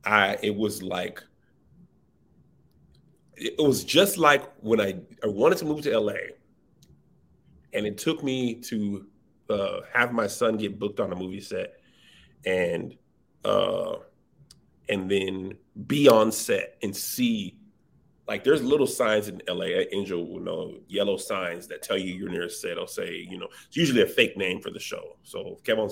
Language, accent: English, American